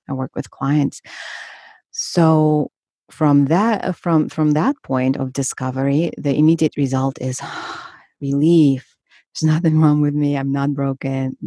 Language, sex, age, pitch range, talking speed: English, female, 30-49, 135-180 Hz, 135 wpm